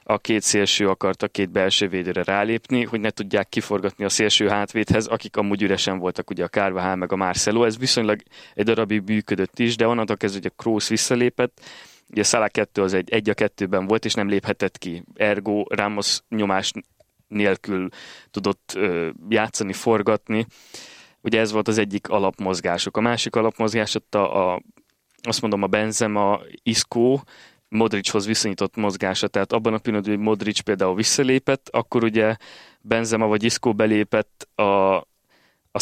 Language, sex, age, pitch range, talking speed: Hungarian, male, 20-39, 100-115 Hz, 160 wpm